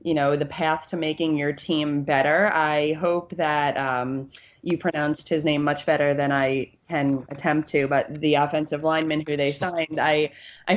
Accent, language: American, English